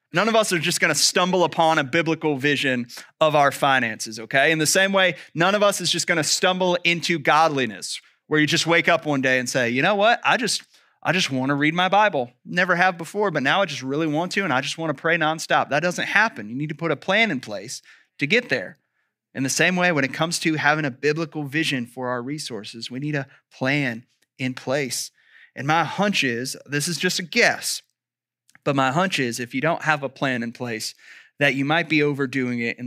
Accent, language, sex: American, English, male